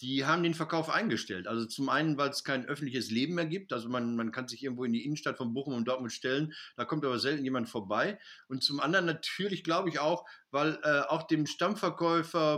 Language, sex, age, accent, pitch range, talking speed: German, male, 50-69, German, 125-160 Hz, 225 wpm